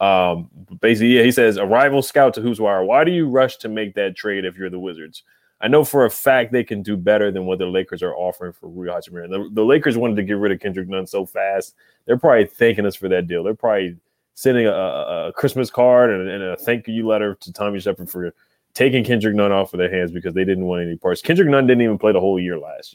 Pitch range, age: 95-120 Hz, 20-39